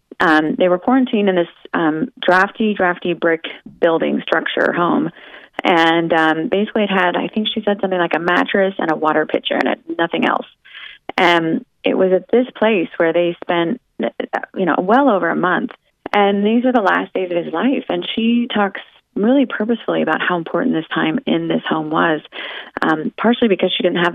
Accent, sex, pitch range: American, female, 160-225 Hz